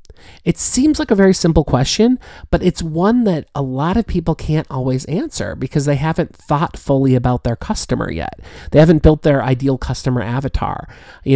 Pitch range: 120-165 Hz